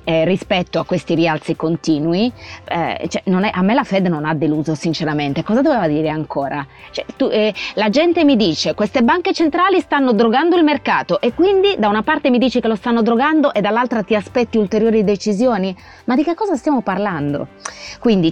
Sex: female